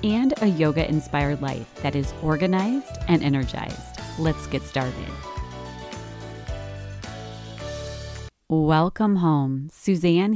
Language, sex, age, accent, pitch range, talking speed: English, female, 30-49, American, 145-215 Hz, 85 wpm